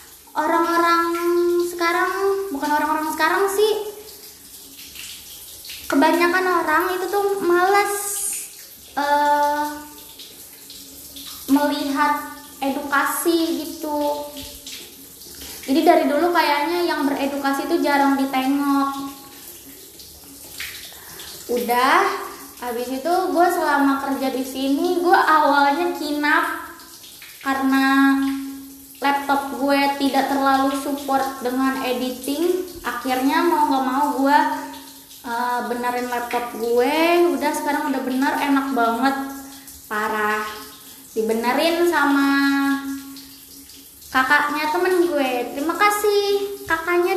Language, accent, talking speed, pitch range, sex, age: Indonesian, native, 85 wpm, 275-340 Hz, female, 20-39